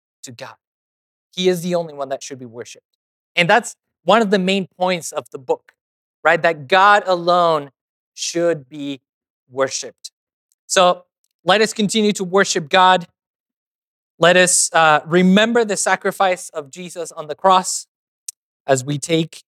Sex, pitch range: male, 140-185 Hz